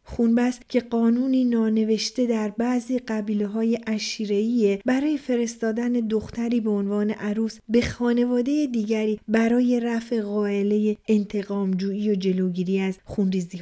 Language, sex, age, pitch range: Persian, female, 30-49, 210-245 Hz